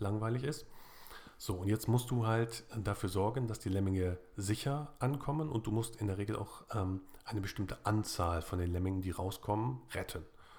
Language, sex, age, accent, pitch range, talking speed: German, male, 40-59, German, 95-115 Hz, 180 wpm